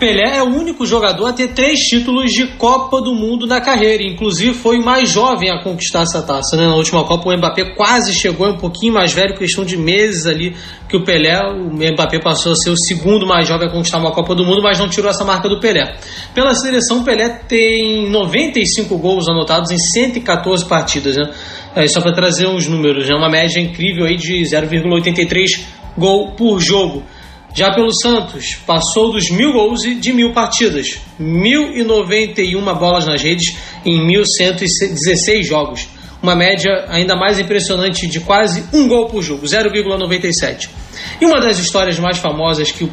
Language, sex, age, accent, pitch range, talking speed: Portuguese, male, 20-39, Brazilian, 170-215 Hz, 185 wpm